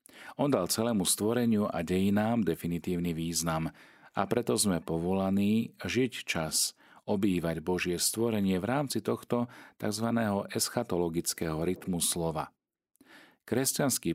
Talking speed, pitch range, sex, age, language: 105 wpm, 80-105 Hz, male, 40-59, Slovak